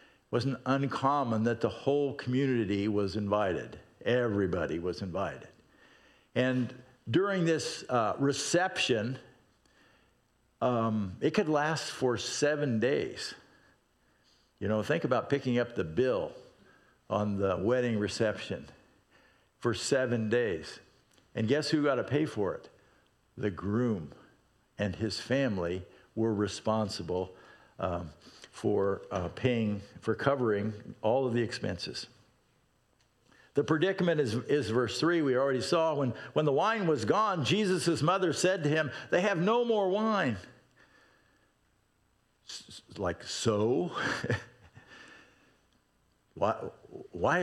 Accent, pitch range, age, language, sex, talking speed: American, 105-150 Hz, 50-69, English, male, 120 wpm